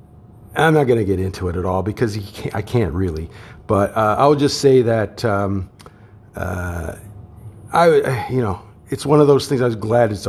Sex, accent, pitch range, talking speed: male, American, 90-115 Hz, 210 wpm